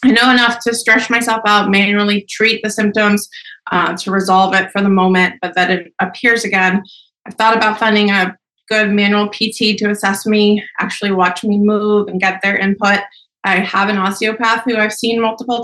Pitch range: 190-220 Hz